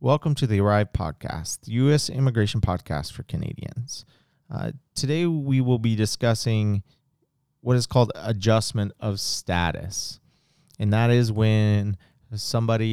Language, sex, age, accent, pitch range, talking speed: English, male, 30-49, American, 100-125 Hz, 130 wpm